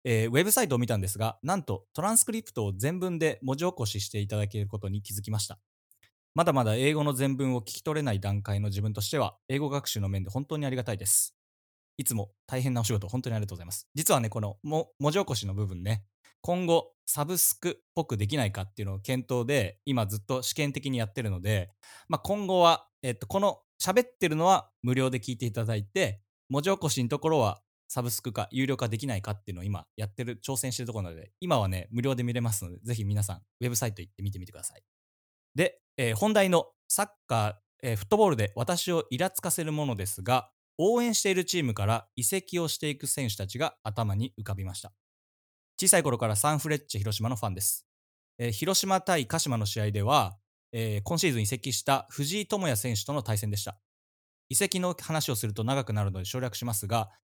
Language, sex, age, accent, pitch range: English, male, 20-39, Japanese, 105-150 Hz